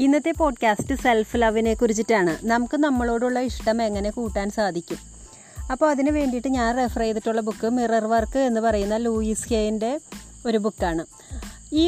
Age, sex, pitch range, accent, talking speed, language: 30-49, female, 210-250 Hz, native, 125 wpm, Malayalam